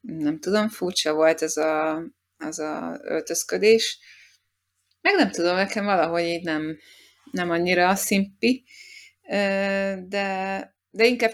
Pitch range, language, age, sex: 155-190 Hz, Hungarian, 20-39, female